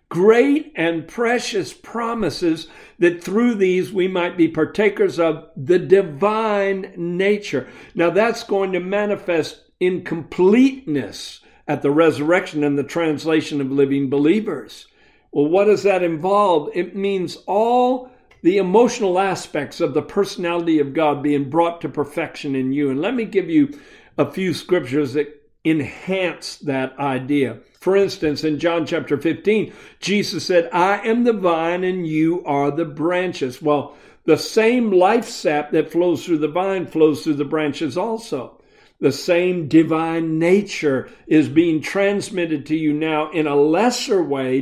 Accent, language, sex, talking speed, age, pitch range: American, English, male, 150 wpm, 60-79, 150-195 Hz